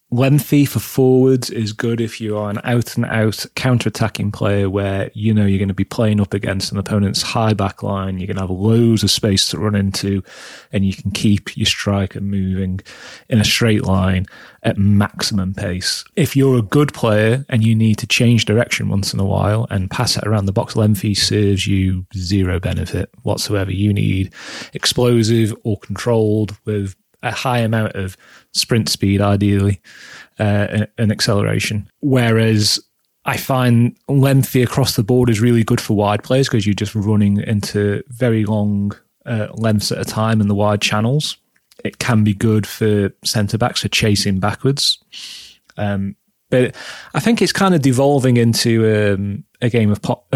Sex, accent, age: male, British, 30-49